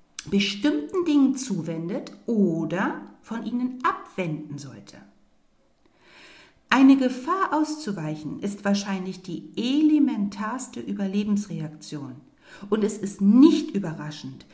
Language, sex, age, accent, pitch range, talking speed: German, female, 60-79, German, 175-260 Hz, 85 wpm